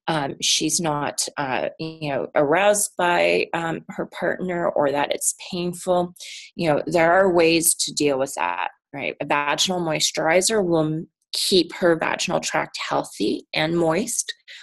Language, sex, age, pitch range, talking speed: English, female, 30-49, 150-180 Hz, 150 wpm